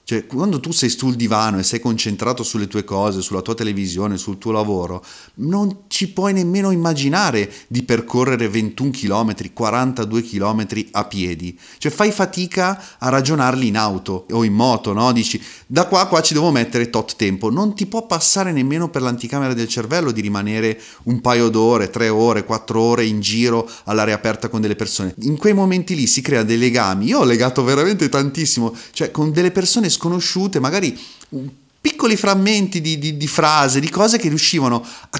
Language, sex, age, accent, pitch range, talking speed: Italian, male, 30-49, native, 115-175 Hz, 180 wpm